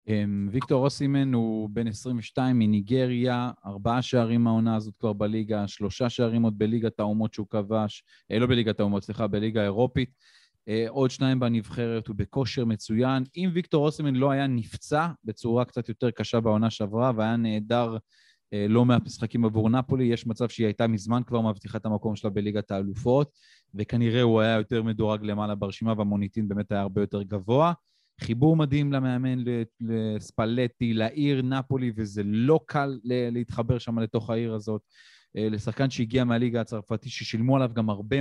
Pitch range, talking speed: 105-125 Hz, 150 wpm